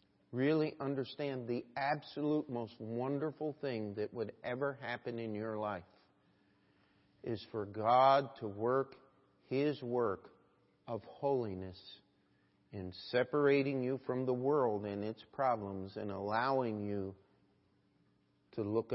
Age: 50-69